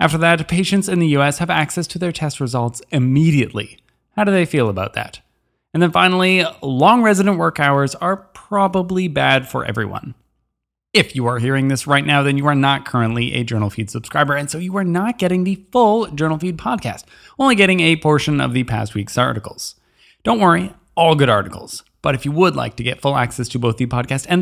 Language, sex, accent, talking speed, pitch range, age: English, male, American, 210 wpm, 125-175 Hz, 20-39